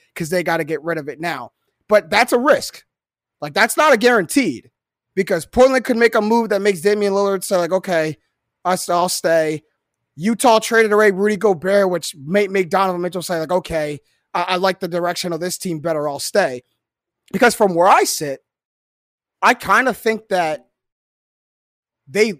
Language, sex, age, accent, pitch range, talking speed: English, male, 30-49, American, 160-210 Hz, 180 wpm